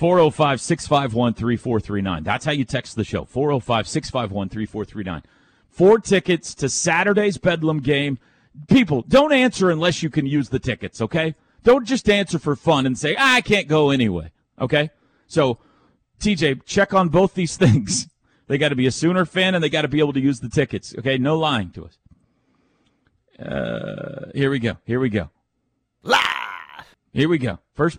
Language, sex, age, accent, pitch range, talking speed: English, male, 40-59, American, 130-180 Hz, 165 wpm